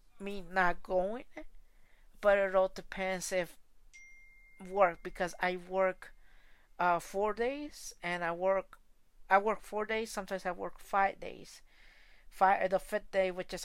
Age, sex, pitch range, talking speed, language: 50-69, female, 175-195 Hz, 145 wpm, English